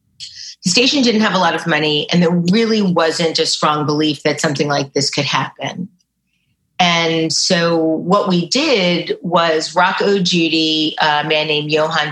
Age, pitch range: 40-59, 145-175 Hz